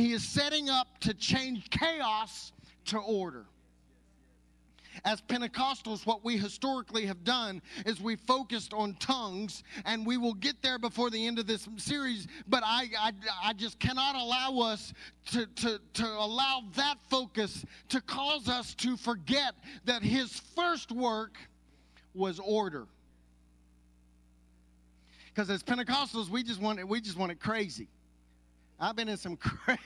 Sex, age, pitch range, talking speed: male, 40-59, 185-255 Hz, 150 wpm